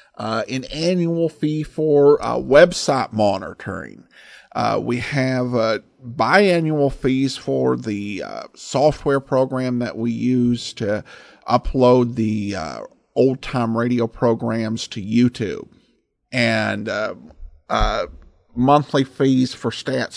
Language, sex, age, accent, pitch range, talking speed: English, male, 50-69, American, 120-160 Hz, 115 wpm